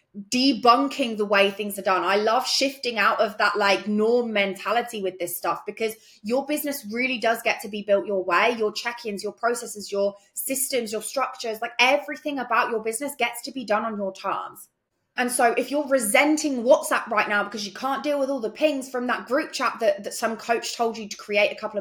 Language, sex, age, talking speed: English, female, 20-39, 215 wpm